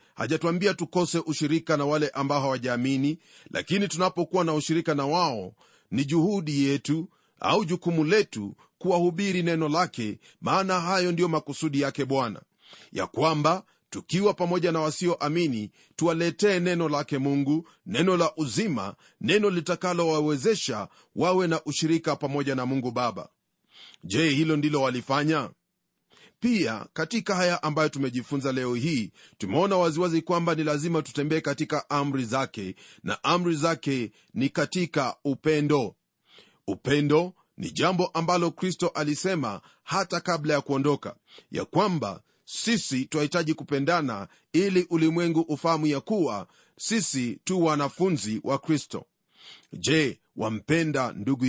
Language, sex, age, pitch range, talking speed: Swahili, male, 40-59, 140-175 Hz, 125 wpm